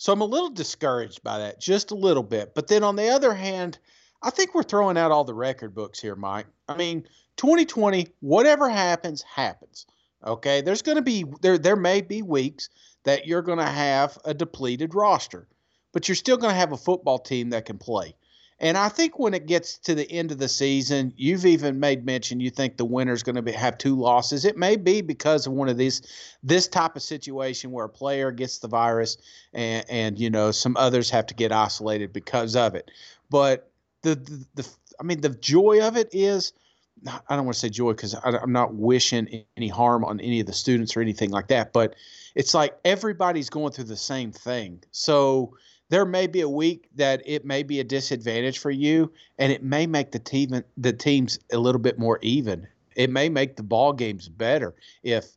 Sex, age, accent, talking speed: male, 40-59, American, 215 wpm